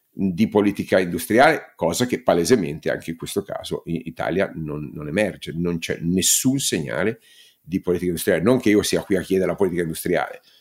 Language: Italian